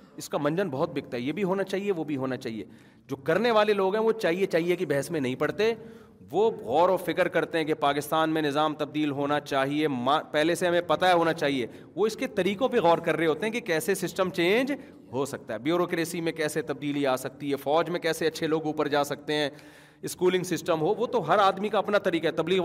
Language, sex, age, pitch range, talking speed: Urdu, male, 40-59, 160-220 Hz, 245 wpm